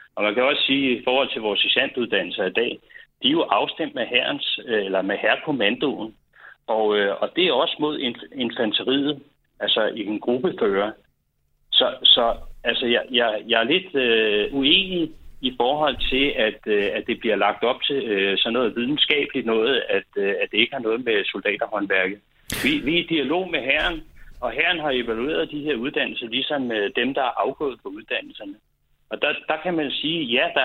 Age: 60-79